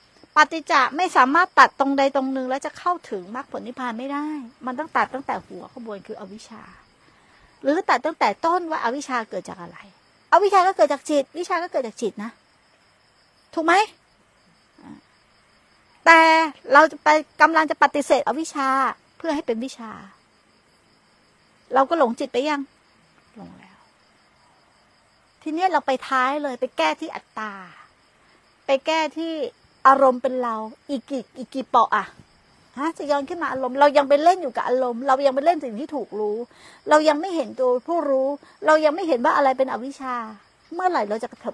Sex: female